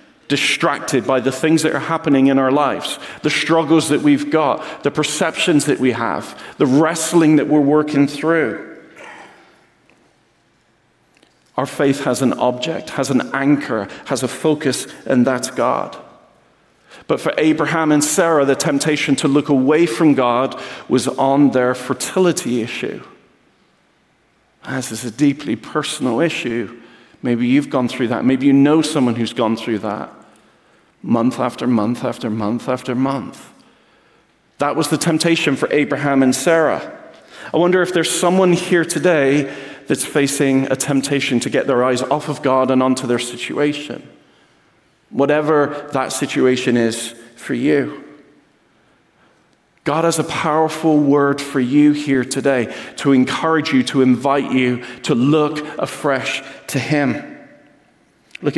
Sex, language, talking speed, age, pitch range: male, English, 145 wpm, 40-59, 130-155 Hz